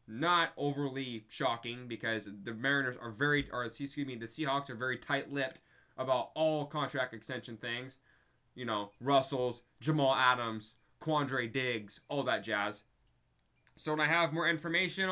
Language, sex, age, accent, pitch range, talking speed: English, male, 20-39, American, 145-210 Hz, 150 wpm